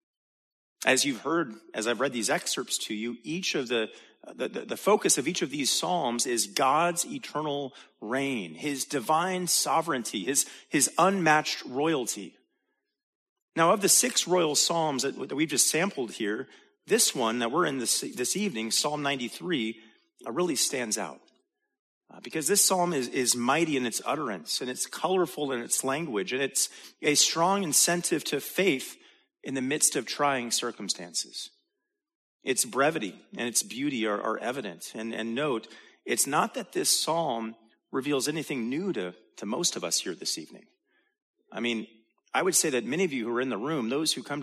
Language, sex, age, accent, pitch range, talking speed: English, male, 30-49, American, 120-185 Hz, 175 wpm